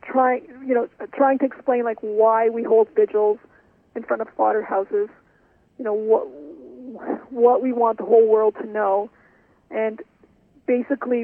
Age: 40-59